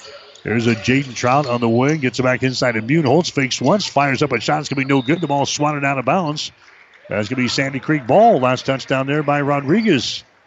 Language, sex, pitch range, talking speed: English, male, 125-145 Hz, 245 wpm